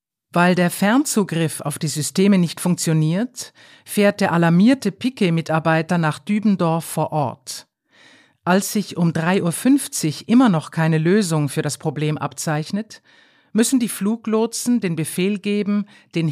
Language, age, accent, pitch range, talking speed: German, 50-69, German, 155-205 Hz, 135 wpm